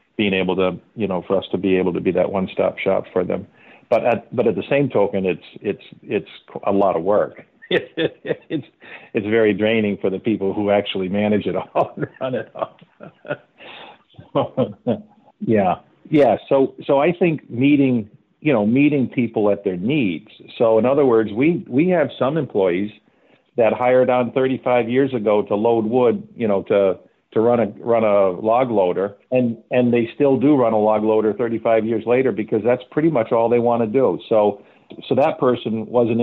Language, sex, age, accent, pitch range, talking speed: English, male, 50-69, American, 105-120 Hz, 190 wpm